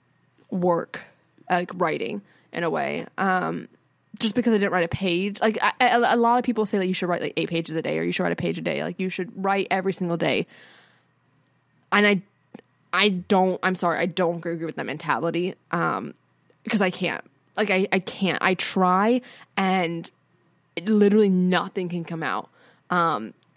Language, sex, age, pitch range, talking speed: English, female, 20-39, 175-215 Hz, 190 wpm